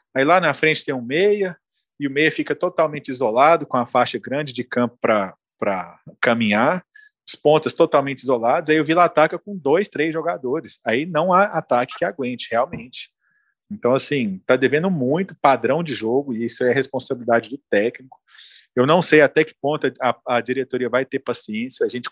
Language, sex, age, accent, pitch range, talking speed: Portuguese, male, 40-59, Brazilian, 125-175 Hz, 185 wpm